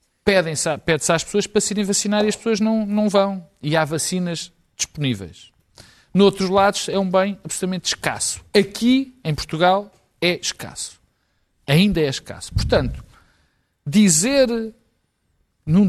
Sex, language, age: male, Portuguese, 50-69